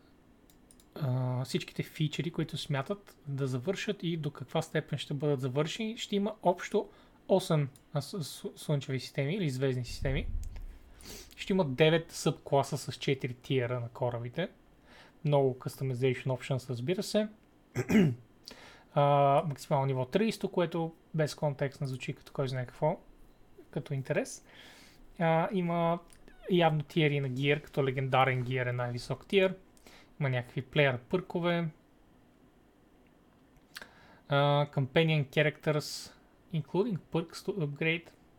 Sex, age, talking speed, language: male, 20-39, 120 wpm, Bulgarian